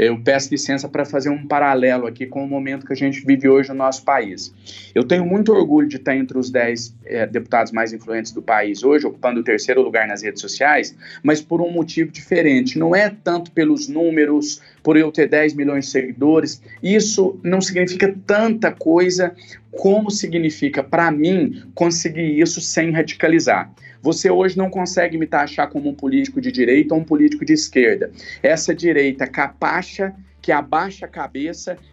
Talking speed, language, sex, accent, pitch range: 180 wpm, Portuguese, male, Brazilian, 150-195 Hz